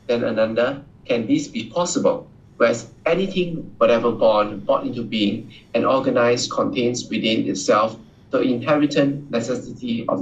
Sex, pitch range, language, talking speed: male, 120-170 Hz, English, 130 wpm